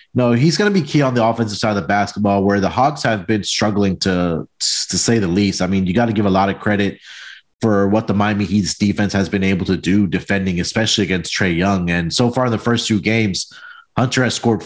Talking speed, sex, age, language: 250 wpm, male, 30-49, English